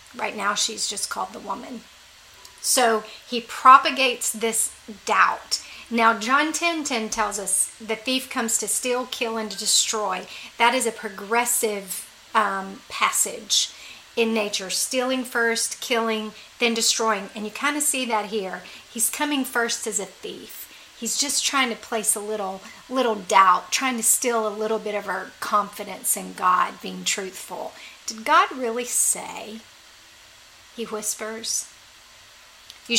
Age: 40-59